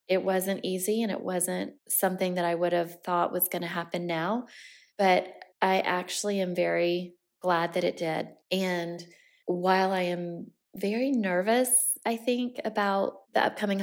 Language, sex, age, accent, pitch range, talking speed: English, female, 20-39, American, 180-215 Hz, 160 wpm